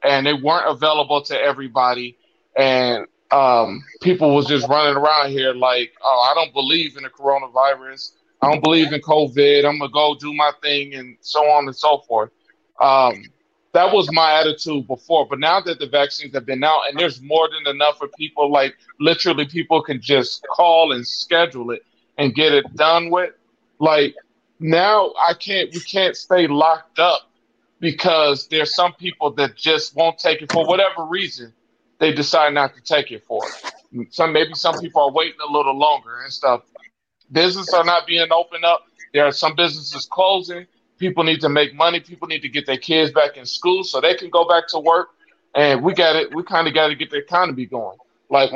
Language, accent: English, American